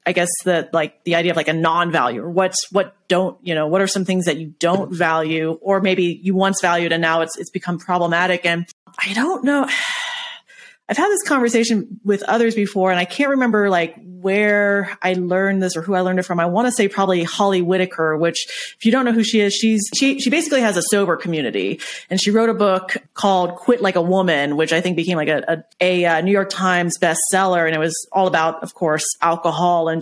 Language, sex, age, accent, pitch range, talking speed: English, female, 30-49, American, 170-200 Hz, 230 wpm